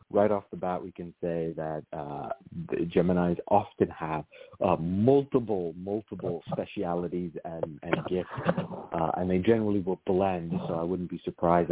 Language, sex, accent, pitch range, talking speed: English, male, American, 85-110 Hz, 160 wpm